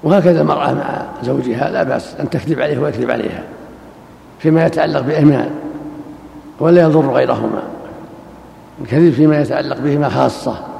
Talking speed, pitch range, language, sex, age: 120 wpm, 140-155 Hz, Arabic, male, 60-79